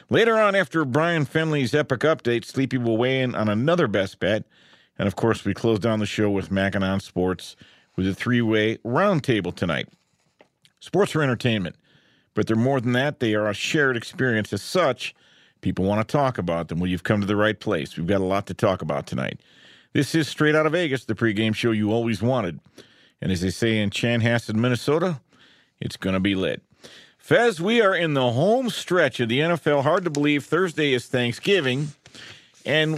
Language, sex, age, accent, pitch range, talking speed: English, male, 50-69, American, 105-150 Hz, 195 wpm